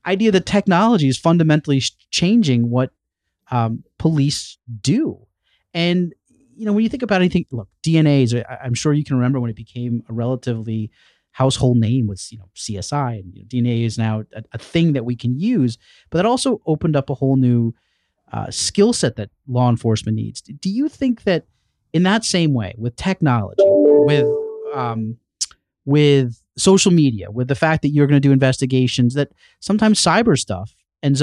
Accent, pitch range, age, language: American, 115-175 Hz, 30-49, English